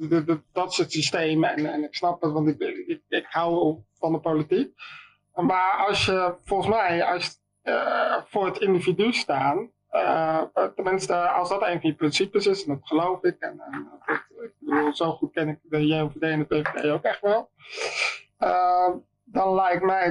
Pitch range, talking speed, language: 160-190 Hz, 170 wpm, Dutch